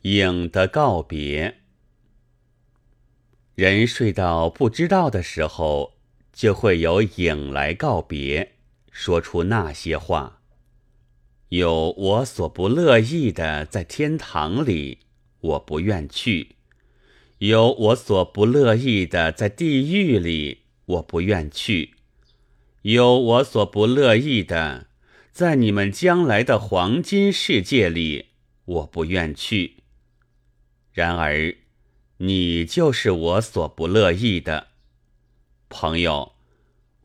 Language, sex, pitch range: Chinese, male, 80-120 Hz